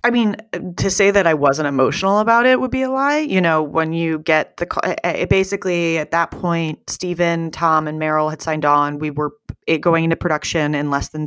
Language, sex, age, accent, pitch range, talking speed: English, female, 30-49, American, 150-180 Hz, 215 wpm